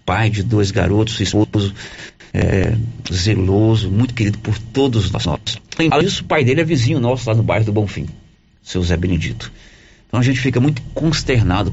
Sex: male